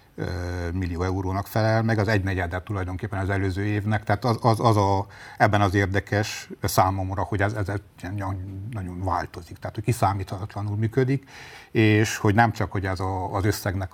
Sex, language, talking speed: male, Hungarian, 160 wpm